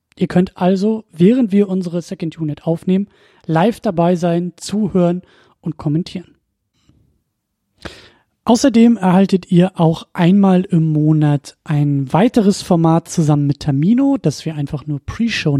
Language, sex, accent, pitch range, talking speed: German, male, German, 155-200 Hz, 125 wpm